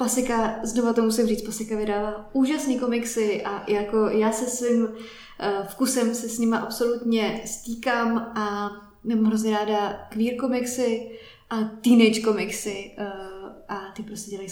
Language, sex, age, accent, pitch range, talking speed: Czech, female, 20-39, native, 205-235 Hz, 135 wpm